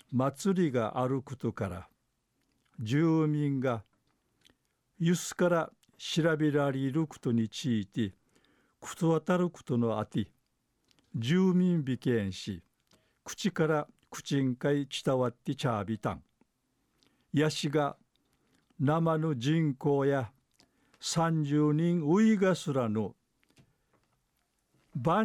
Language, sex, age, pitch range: Japanese, male, 50-69, 120-165 Hz